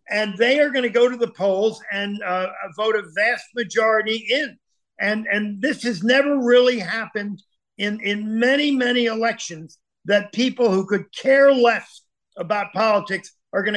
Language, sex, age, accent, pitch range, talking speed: English, male, 50-69, American, 205-245 Hz, 165 wpm